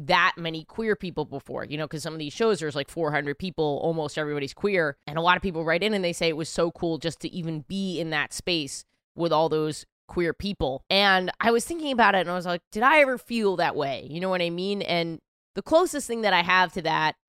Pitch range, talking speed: 160-195 Hz, 260 wpm